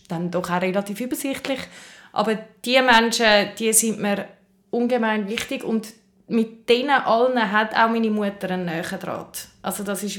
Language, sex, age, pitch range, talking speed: German, female, 20-39, 185-225 Hz, 160 wpm